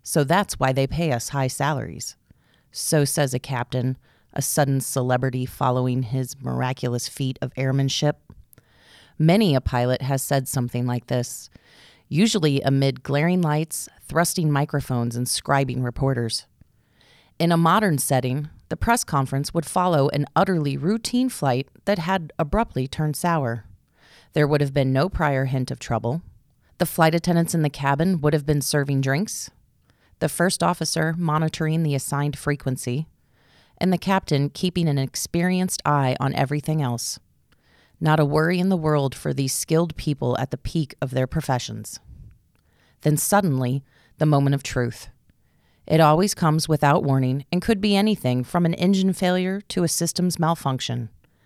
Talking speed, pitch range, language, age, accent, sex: 155 wpm, 130-165 Hz, English, 30-49, American, female